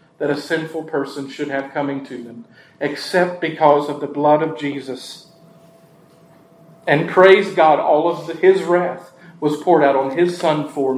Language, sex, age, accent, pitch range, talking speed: English, male, 40-59, American, 140-170 Hz, 170 wpm